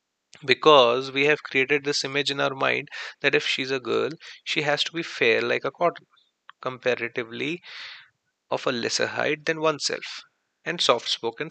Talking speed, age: 160 wpm, 30-49